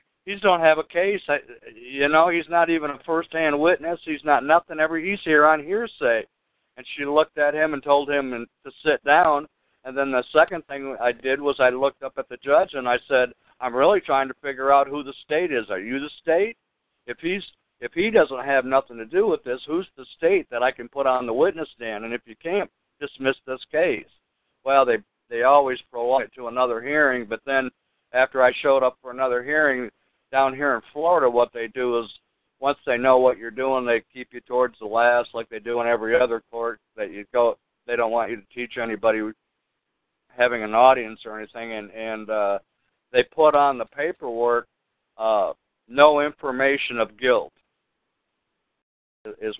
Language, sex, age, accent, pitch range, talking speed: English, male, 60-79, American, 120-150 Hz, 205 wpm